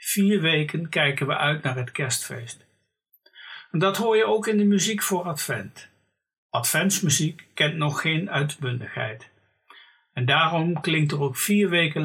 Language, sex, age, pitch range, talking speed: Dutch, male, 60-79, 140-185 Hz, 150 wpm